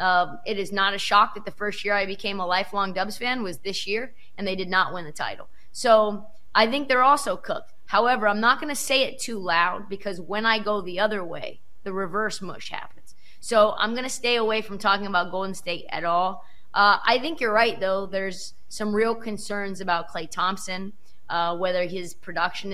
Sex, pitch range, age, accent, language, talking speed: female, 190-225 Hz, 20-39, American, English, 215 wpm